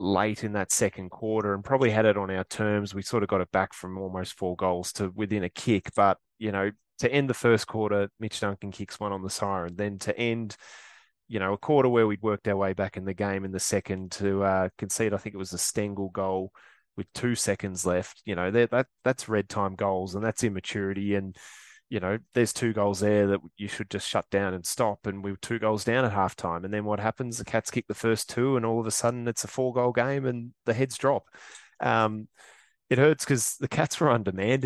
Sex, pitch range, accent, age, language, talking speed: male, 100-115 Hz, Australian, 20-39, English, 245 wpm